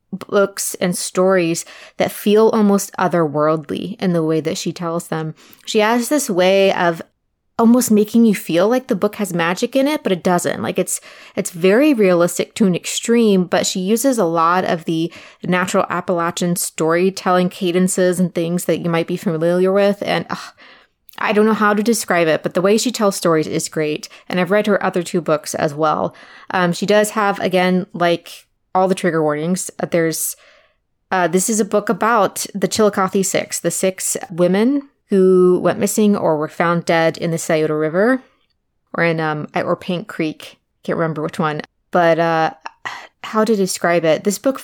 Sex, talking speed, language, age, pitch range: female, 185 wpm, English, 20-39, 170-210 Hz